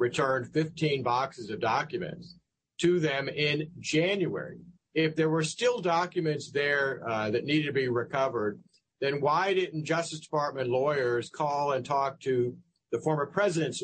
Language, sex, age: English, male, 50-69